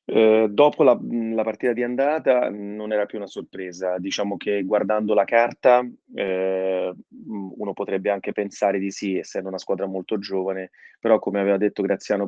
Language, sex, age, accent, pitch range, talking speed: Italian, male, 30-49, native, 95-115 Hz, 160 wpm